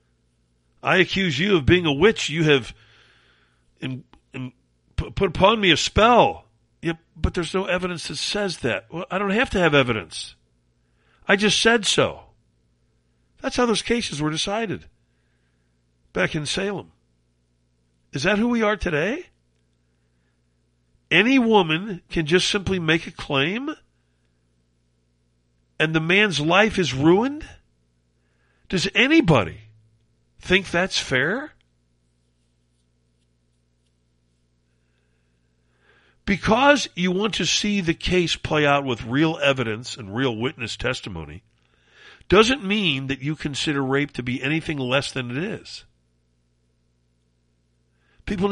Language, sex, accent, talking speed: English, male, American, 120 wpm